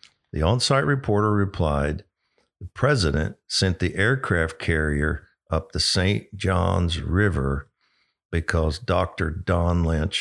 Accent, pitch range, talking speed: American, 80-95 Hz, 110 wpm